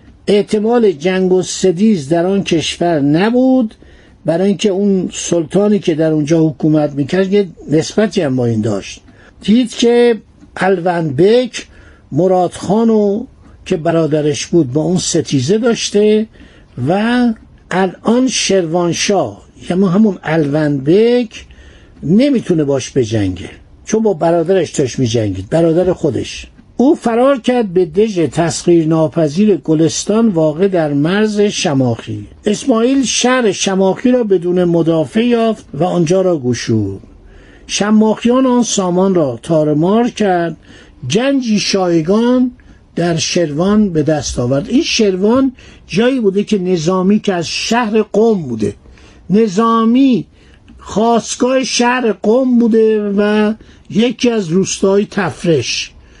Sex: male